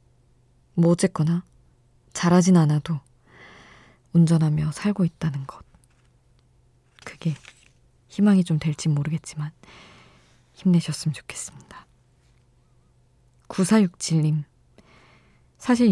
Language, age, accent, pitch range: Korean, 20-39, native, 150-185 Hz